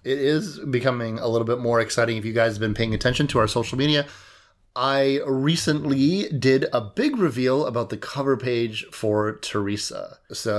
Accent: American